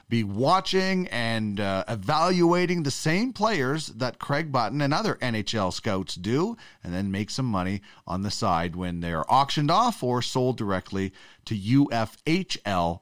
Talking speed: 155 wpm